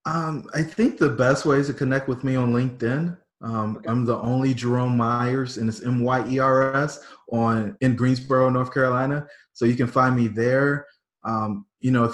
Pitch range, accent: 110-130 Hz, American